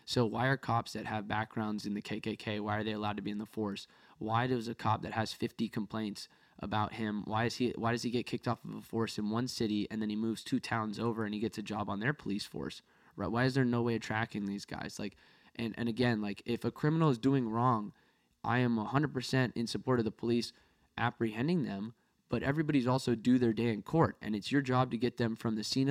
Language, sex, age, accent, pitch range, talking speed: English, male, 10-29, American, 110-130 Hz, 250 wpm